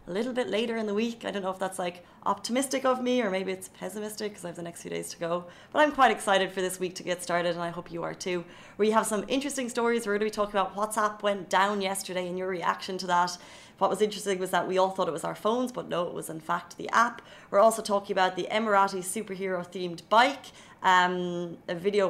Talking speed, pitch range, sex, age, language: 260 wpm, 180-215 Hz, female, 30-49, Arabic